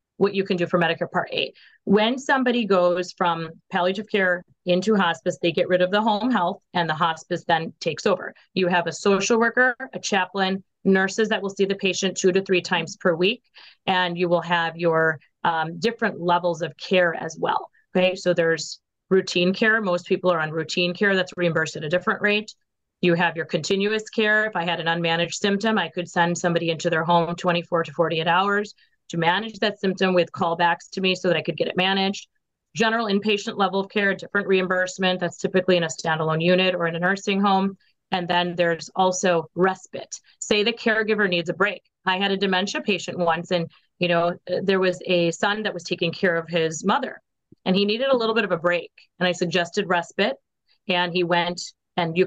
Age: 30-49